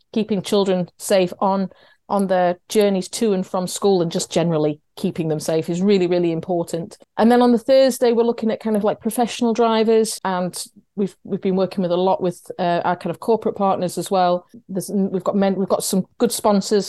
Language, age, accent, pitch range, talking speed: English, 30-49, British, 180-220 Hz, 215 wpm